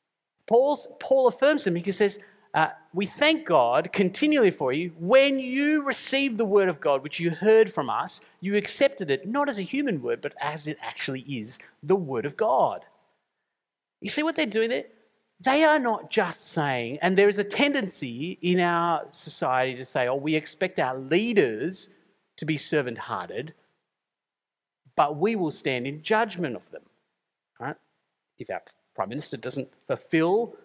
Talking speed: 170 wpm